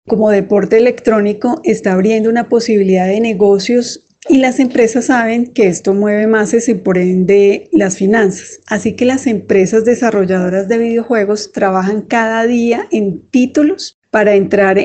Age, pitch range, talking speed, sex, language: 30-49, 195-230 Hz, 145 wpm, female, Spanish